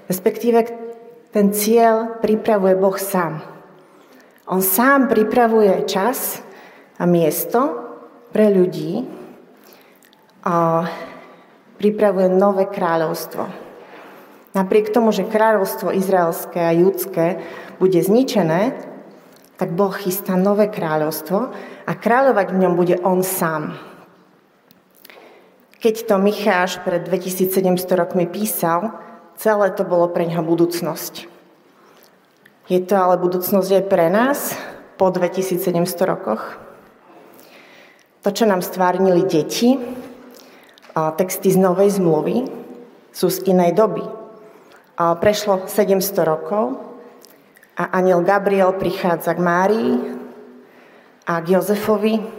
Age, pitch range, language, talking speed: 30-49, 175-210 Hz, Slovak, 100 wpm